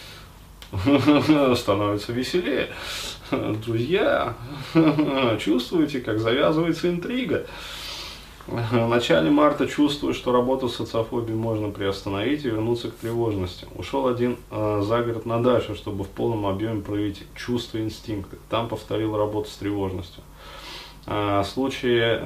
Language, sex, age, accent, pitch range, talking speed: Russian, male, 20-39, native, 95-115 Hz, 110 wpm